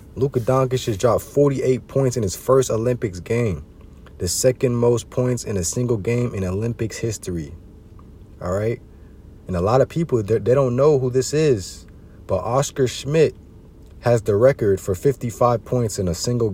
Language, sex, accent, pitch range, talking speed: English, male, American, 90-125 Hz, 170 wpm